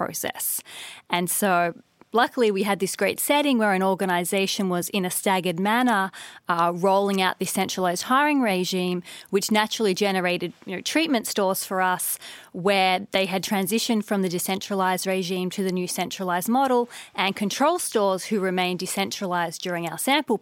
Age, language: 30-49, English